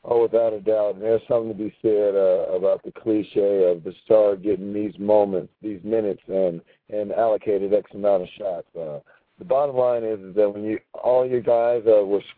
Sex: male